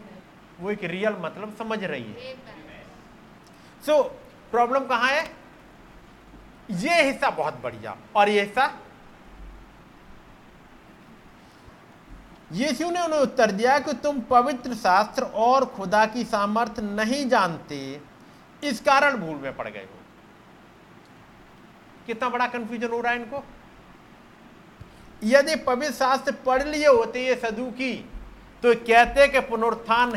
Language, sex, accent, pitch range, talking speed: Hindi, male, native, 225-270 Hz, 115 wpm